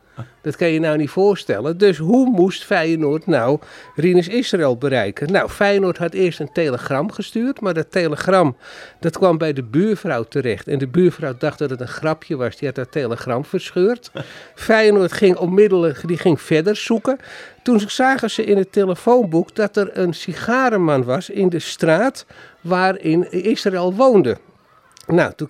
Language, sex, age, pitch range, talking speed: Dutch, male, 50-69, 160-210 Hz, 165 wpm